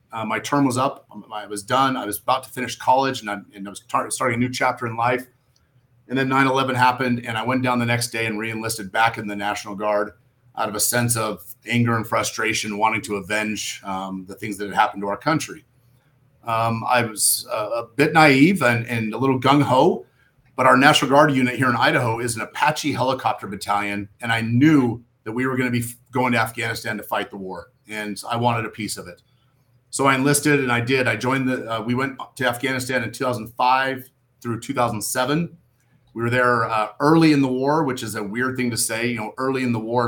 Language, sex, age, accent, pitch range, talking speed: English, male, 40-59, American, 115-135 Hz, 225 wpm